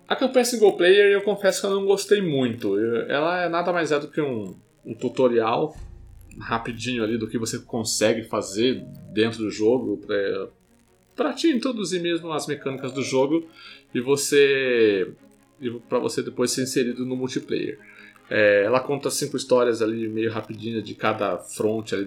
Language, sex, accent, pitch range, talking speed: Portuguese, male, Brazilian, 110-140 Hz, 165 wpm